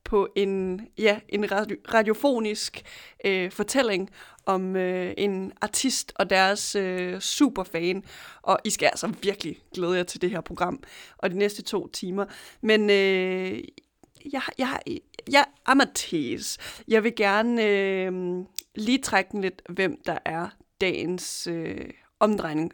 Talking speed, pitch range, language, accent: 140 wpm, 185-220 Hz, Danish, native